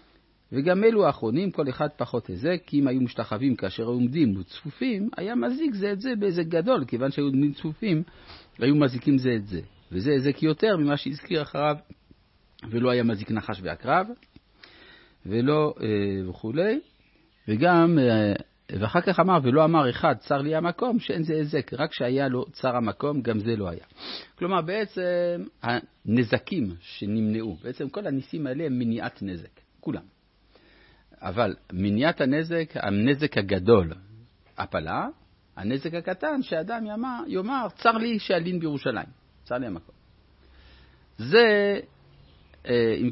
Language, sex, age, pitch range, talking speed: Hebrew, male, 50-69, 105-165 Hz, 135 wpm